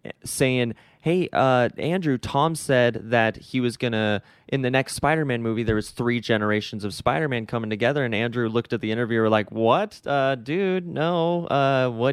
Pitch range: 105-130 Hz